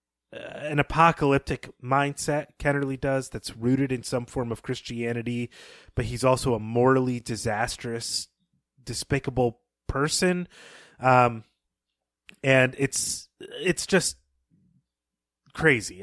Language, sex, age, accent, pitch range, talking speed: English, male, 30-49, American, 105-140 Hz, 95 wpm